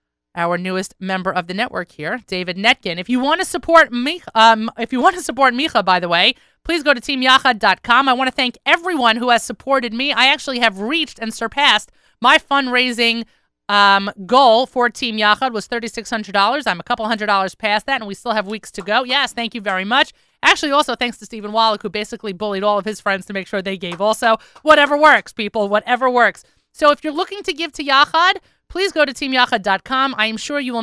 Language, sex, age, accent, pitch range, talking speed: English, female, 30-49, American, 210-280 Hz, 225 wpm